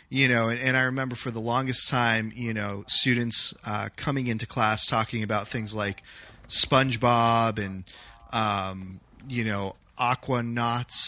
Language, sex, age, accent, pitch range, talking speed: English, male, 30-49, American, 110-130 Hz, 150 wpm